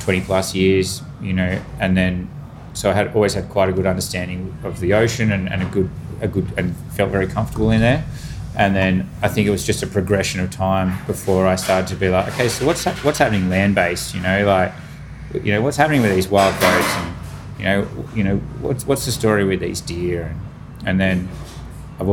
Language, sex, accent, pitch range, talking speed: English, male, Australian, 95-120 Hz, 220 wpm